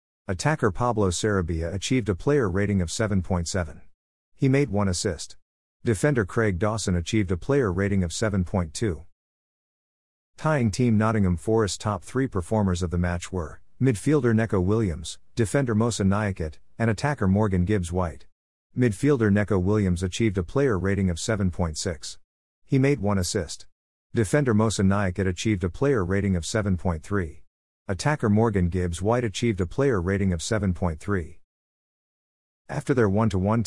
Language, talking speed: English, 135 wpm